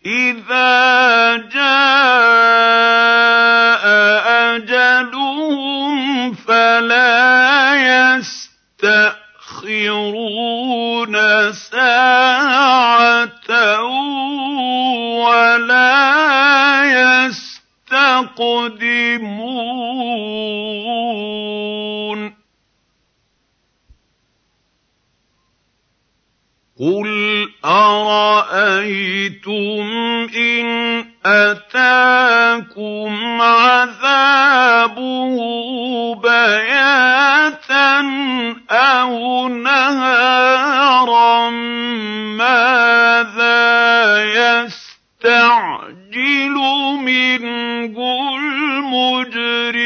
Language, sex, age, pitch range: Arabic, male, 50-69, 230-255 Hz